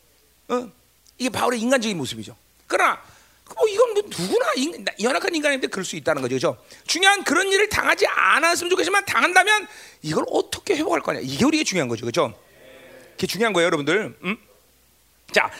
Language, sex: Korean, male